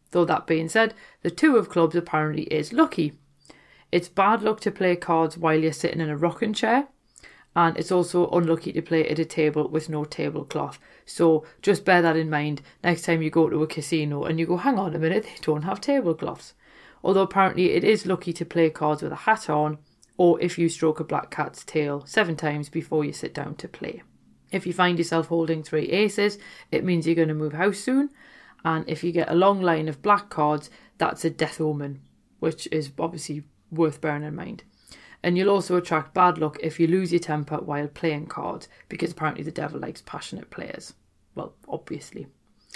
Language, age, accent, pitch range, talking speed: English, 40-59, British, 155-190 Hz, 205 wpm